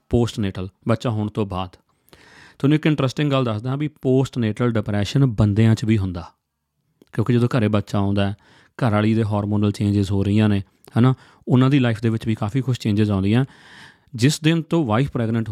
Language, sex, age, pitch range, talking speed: Punjabi, male, 30-49, 110-135 Hz, 190 wpm